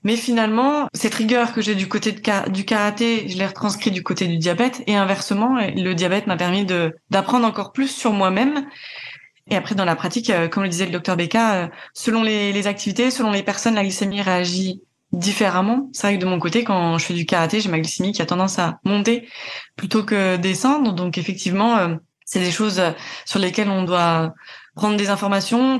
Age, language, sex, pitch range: 20-39, French, female, 185-225 Hz